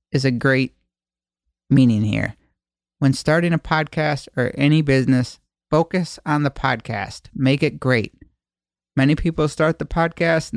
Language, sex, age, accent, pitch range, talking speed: English, male, 50-69, American, 130-170 Hz, 140 wpm